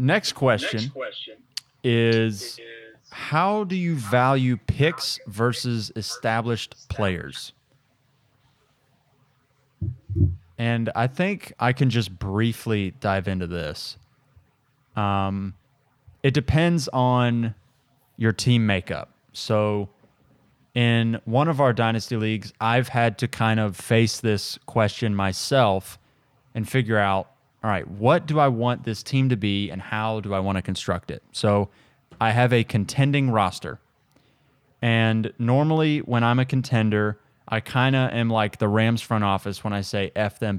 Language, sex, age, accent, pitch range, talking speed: English, male, 20-39, American, 105-130 Hz, 135 wpm